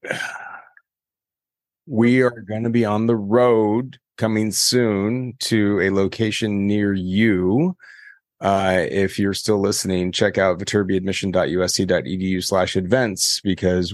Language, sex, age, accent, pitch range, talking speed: English, male, 30-49, American, 95-110 Hz, 110 wpm